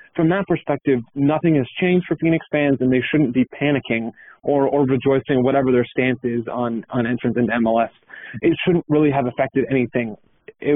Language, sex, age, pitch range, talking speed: English, male, 30-49, 125-150 Hz, 185 wpm